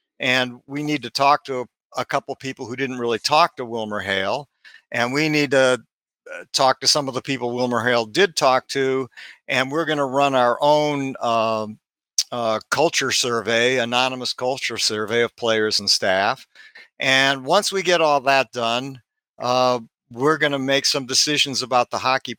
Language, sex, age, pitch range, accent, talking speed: English, male, 50-69, 120-145 Hz, American, 180 wpm